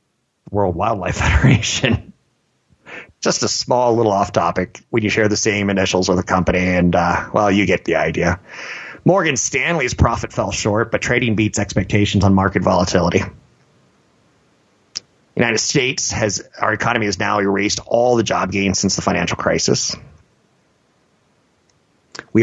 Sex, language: male, English